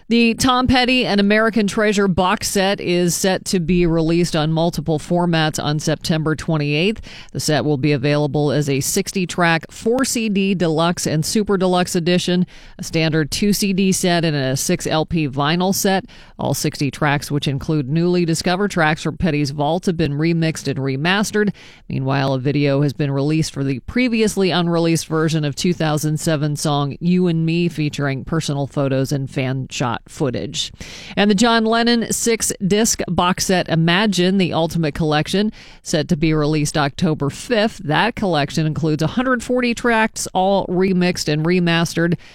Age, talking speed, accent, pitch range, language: 40-59, 155 wpm, American, 150-185 Hz, English